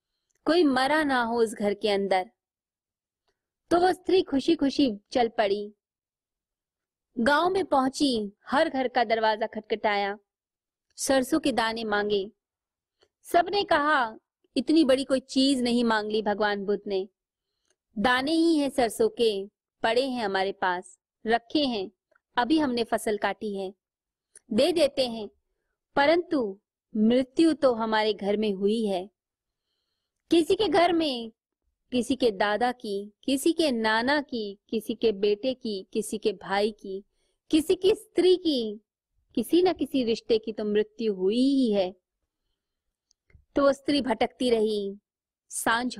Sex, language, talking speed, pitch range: female, Hindi, 140 wpm, 210-280 Hz